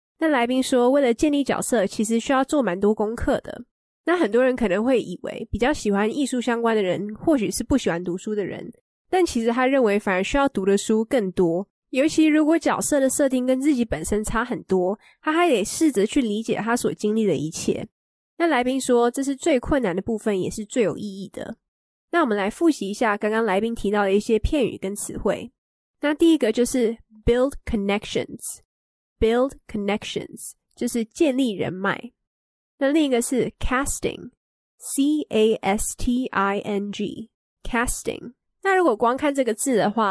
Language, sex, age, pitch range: English, female, 20-39, 205-265 Hz